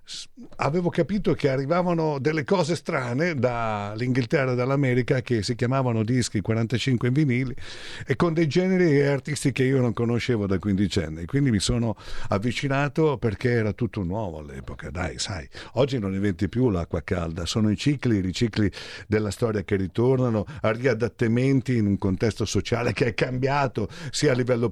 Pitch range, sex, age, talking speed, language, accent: 110-155 Hz, male, 50-69, 165 wpm, Italian, native